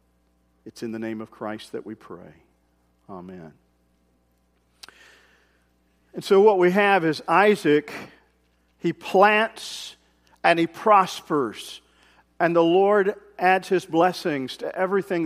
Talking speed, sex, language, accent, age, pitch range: 120 wpm, male, English, American, 50-69, 110-185 Hz